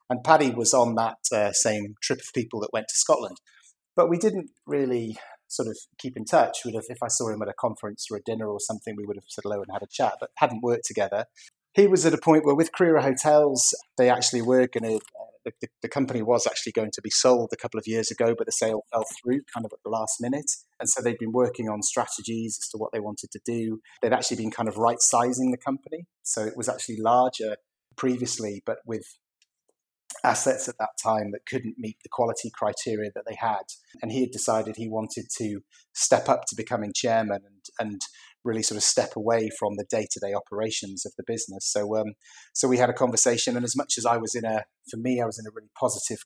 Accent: British